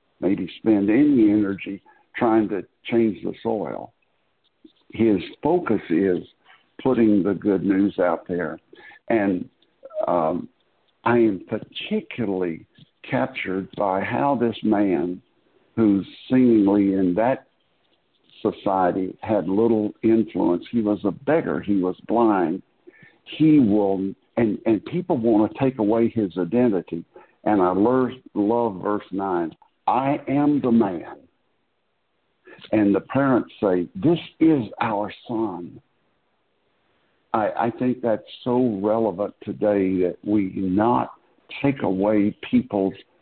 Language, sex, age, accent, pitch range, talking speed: English, male, 60-79, American, 100-120 Hz, 120 wpm